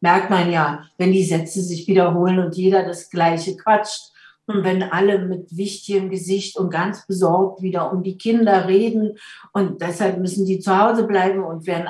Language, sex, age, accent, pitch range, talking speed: German, female, 60-79, German, 185-240 Hz, 180 wpm